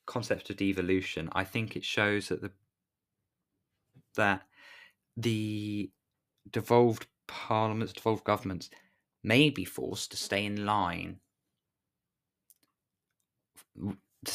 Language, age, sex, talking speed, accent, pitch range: English, 20-39, male, 95 wpm, British, 95-115 Hz